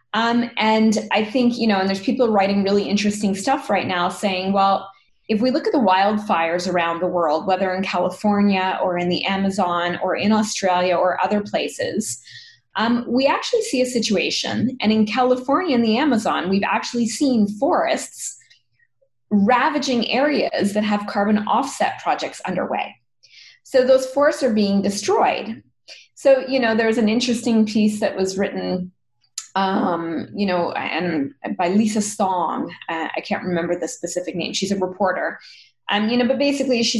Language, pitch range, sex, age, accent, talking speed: English, 190-245 Hz, female, 20-39, American, 165 wpm